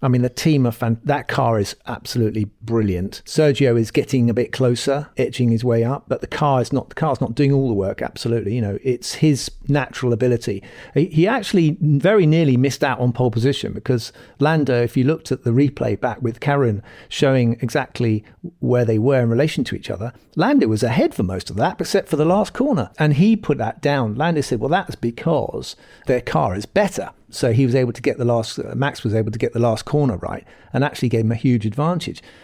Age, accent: 50-69, British